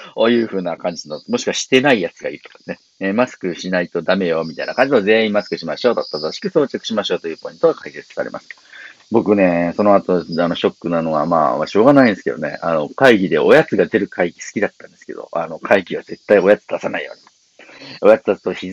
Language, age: Japanese, 50-69